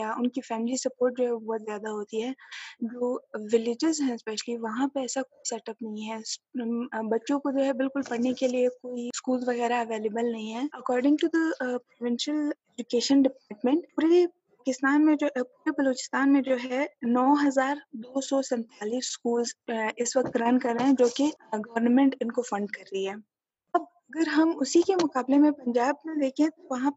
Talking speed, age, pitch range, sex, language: 90 wpm, 20-39, 230-275 Hz, female, Urdu